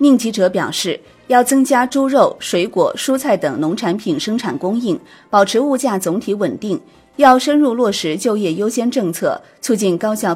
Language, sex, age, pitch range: Chinese, female, 30-49, 180-235 Hz